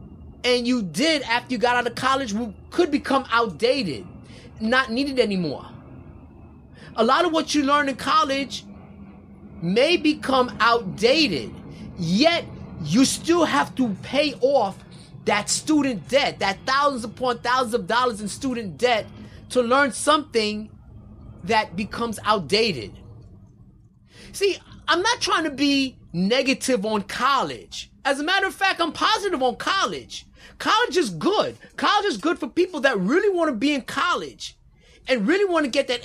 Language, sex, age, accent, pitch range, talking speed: English, male, 30-49, American, 225-310 Hz, 150 wpm